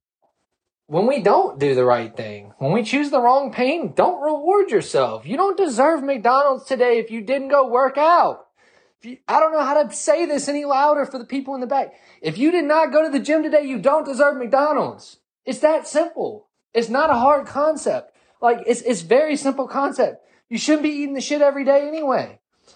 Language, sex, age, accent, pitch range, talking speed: English, male, 20-39, American, 195-285 Hz, 210 wpm